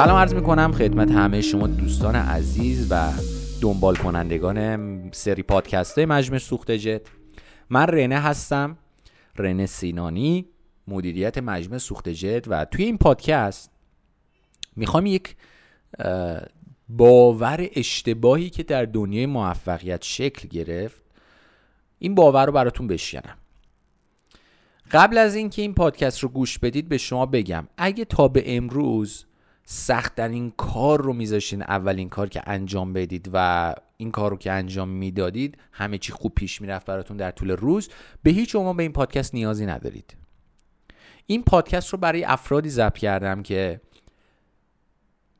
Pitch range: 95-140 Hz